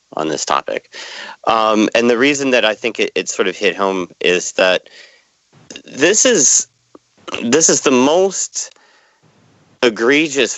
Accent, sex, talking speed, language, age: American, male, 140 wpm, English, 40-59